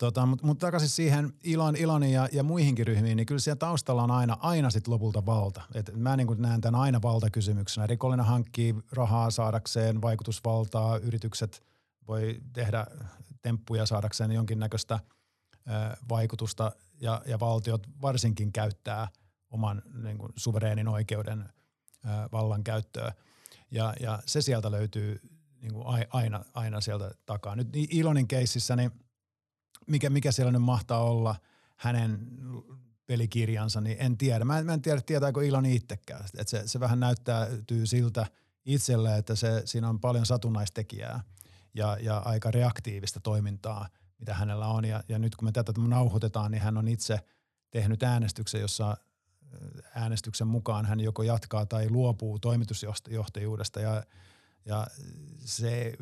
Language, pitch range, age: Finnish, 110-125 Hz, 50-69